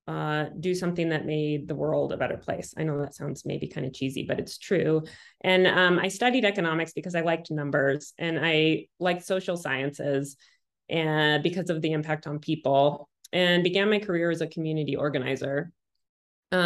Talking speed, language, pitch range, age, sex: 185 wpm, English, 150-180 Hz, 20-39, female